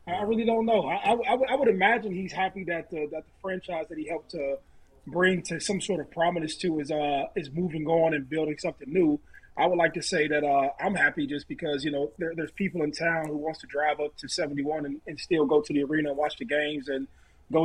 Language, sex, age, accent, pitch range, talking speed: English, male, 30-49, American, 145-175 Hz, 260 wpm